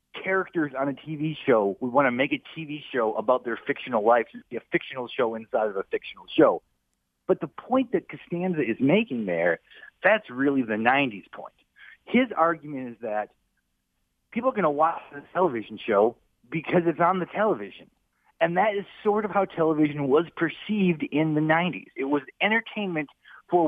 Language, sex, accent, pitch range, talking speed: English, male, American, 140-210 Hz, 180 wpm